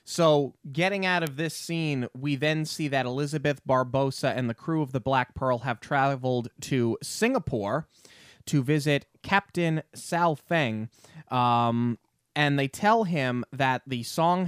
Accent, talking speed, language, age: American, 150 wpm, English, 20-39